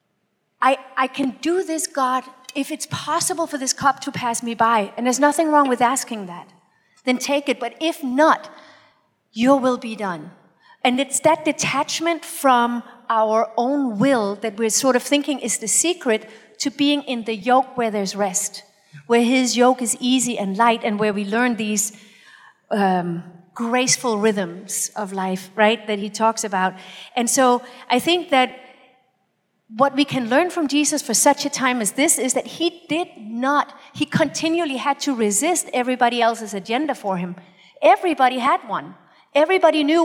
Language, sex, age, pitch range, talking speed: English, female, 40-59, 220-290 Hz, 175 wpm